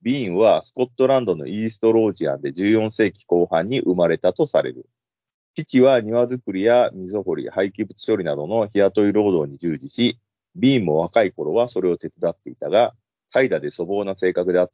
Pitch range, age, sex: 85-115 Hz, 40-59, male